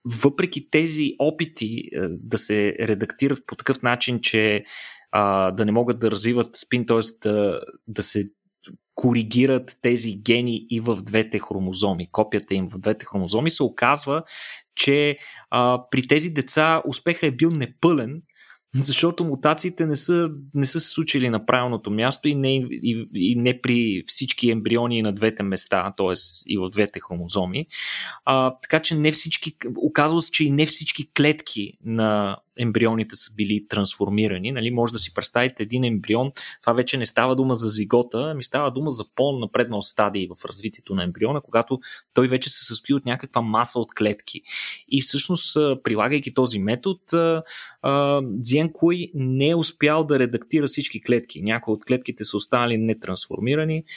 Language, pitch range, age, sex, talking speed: Bulgarian, 110-145 Hz, 20-39, male, 155 wpm